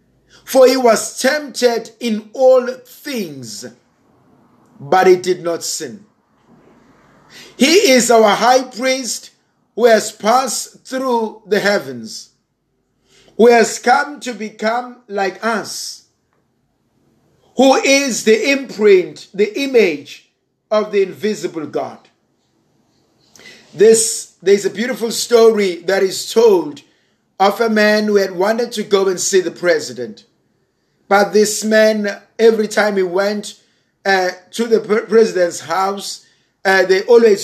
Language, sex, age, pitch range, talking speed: English, male, 50-69, 195-230 Hz, 120 wpm